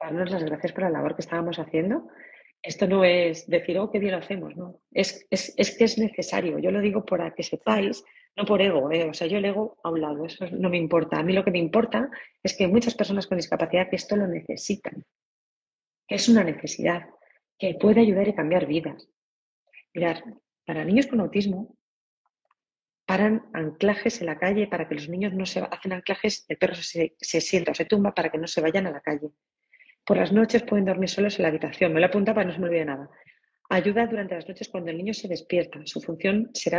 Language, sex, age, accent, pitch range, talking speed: Spanish, female, 30-49, Spanish, 165-205 Hz, 220 wpm